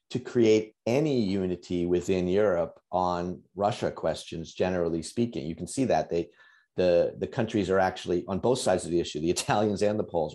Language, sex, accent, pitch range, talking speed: English, male, American, 90-115 Hz, 180 wpm